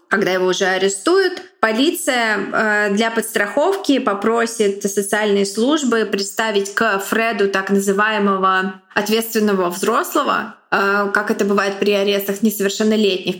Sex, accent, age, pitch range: female, native, 20-39, 200-235 Hz